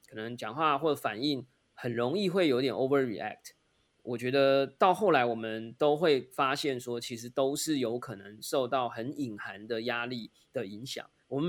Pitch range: 115-145 Hz